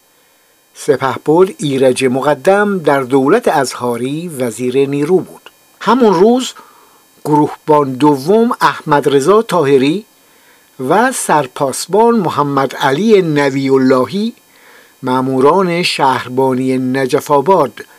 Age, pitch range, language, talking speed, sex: 60-79, 130-180 Hz, Persian, 85 wpm, male